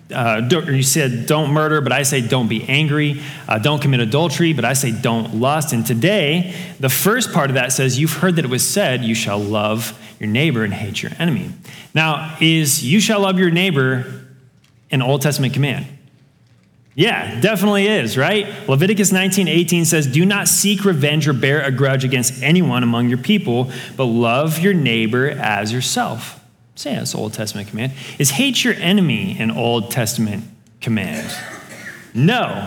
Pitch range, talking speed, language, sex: 125-170 Hz, 180 wpm, English, male